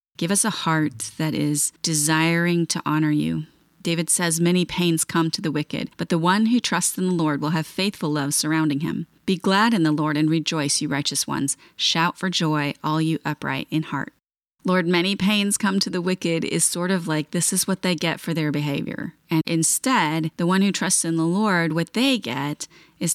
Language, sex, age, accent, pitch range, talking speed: English, female, 30-49, American, 155-190 Hz, 215 wpm